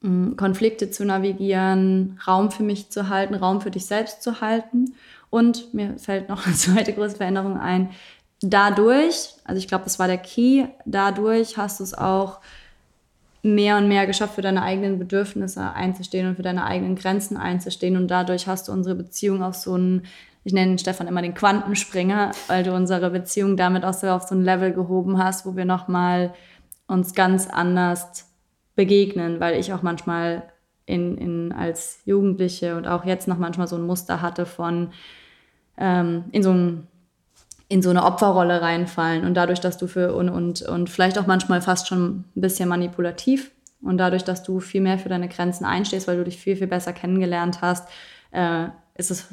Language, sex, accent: German, female, German